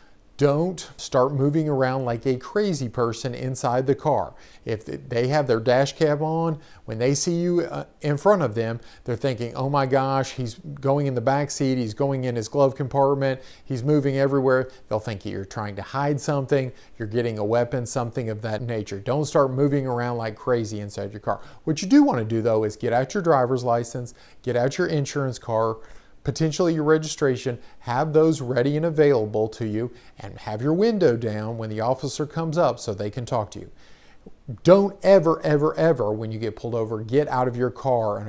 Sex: male